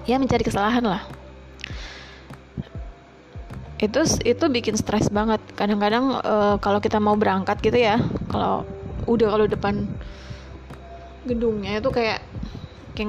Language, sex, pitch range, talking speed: English, female, 195-235 Hz, 115 wpm